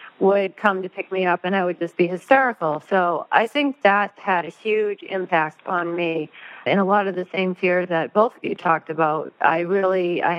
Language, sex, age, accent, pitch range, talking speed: English, female, 40-59, American, 170-195 Hz, 220 wpm